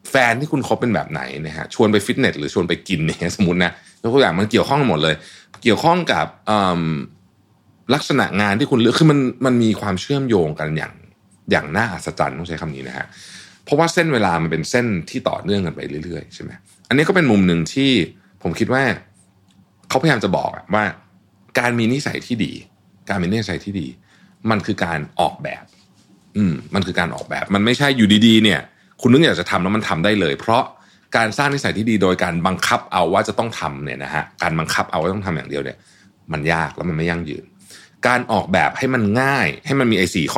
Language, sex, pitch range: Thai, male, 85-115 Hz